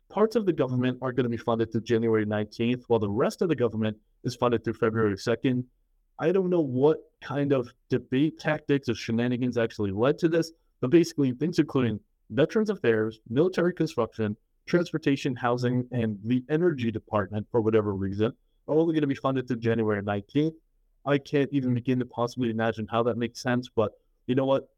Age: 30-49